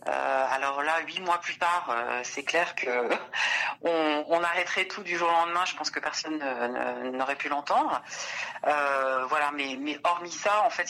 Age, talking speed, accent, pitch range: 40-59, 210 wpm, French, 135-170 Hz